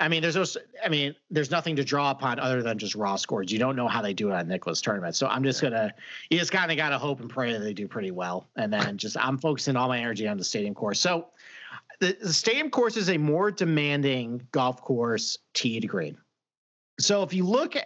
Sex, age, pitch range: male, 50-69, 135-185 Hz